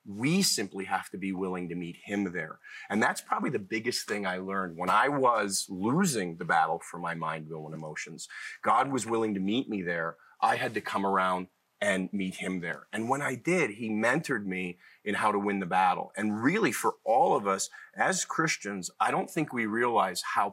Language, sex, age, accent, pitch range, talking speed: English, male, 40-59, American, 95-130 Hz, 215 wpm